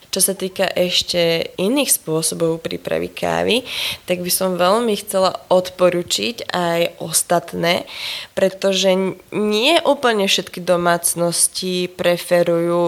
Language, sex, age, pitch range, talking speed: Slovak, female, 20-39, 175-195 Hz, 100 wpm